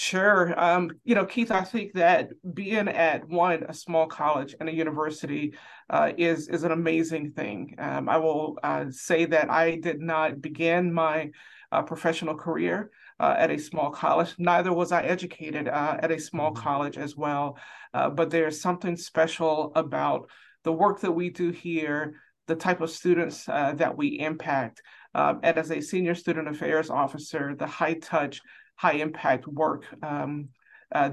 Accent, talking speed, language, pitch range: American, 170 wpm, English, 150-170 Hz